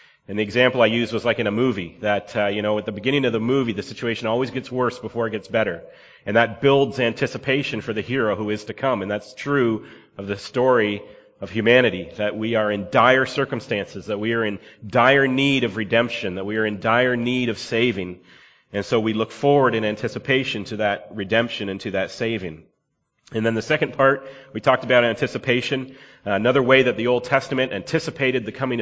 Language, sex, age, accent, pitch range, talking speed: English, male, 30-49, American, 110-130 Hz, 215 wpm